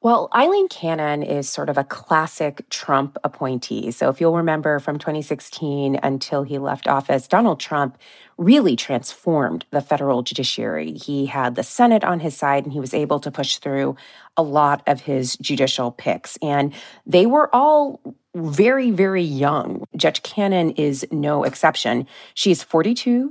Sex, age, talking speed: female, 30-49, 155 wpm